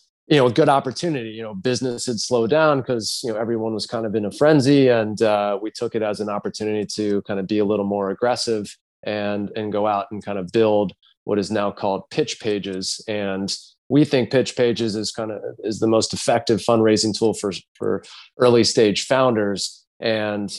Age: 30-49